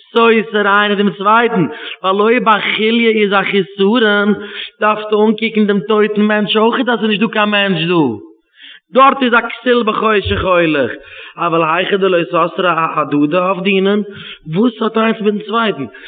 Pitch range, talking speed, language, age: 170-225 Hz, 185 wpm, English, 30-49